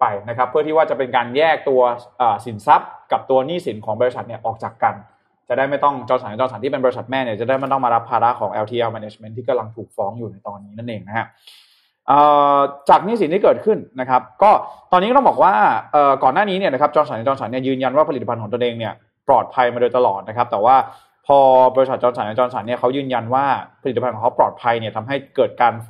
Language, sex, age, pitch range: Thai, male, 20-39, 115-145 Hz